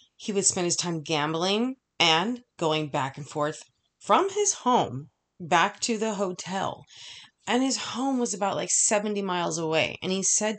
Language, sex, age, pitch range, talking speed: English, female, 30-49, 160-215 Hz, 170 wpm